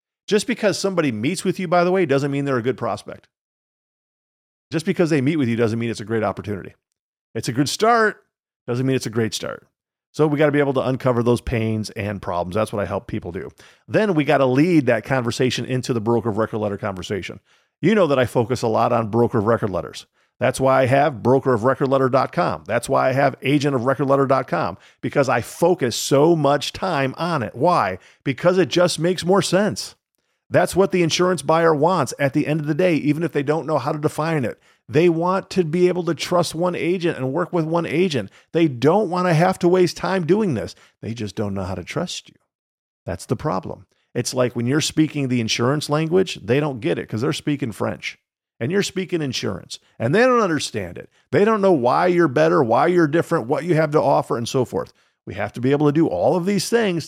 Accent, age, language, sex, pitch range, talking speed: American, 50-69, English, male, 120-175 Hz, 225 wpm